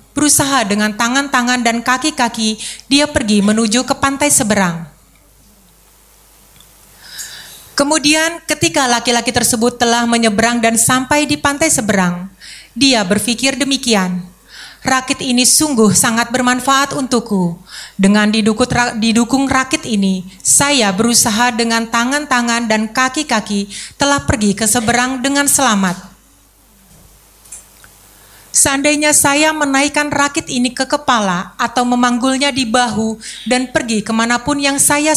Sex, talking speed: female, 105 wpm